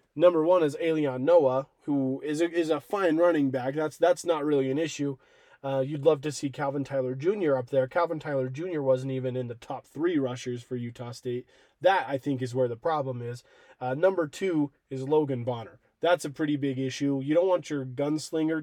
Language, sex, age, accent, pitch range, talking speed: English, male, 20-39, American, 135-155 Hz, 215 wpm